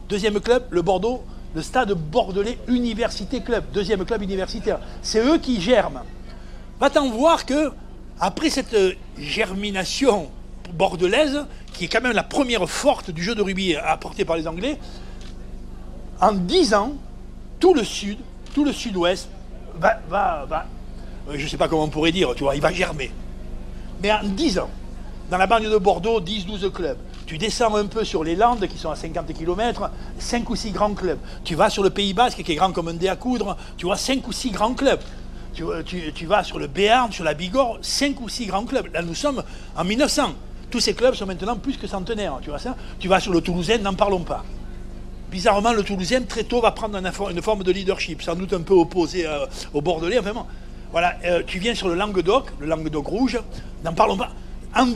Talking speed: 205 wpm